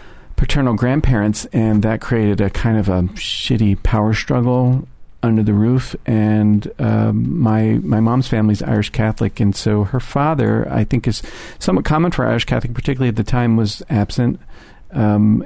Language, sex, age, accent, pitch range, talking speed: English, male, 50-69, American, 110-130 Hz, 165 wpm